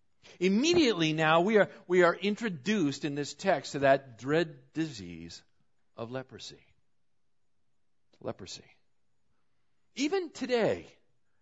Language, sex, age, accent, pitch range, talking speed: English, male, 50-69, American, 125-180 Hz, 100 wpm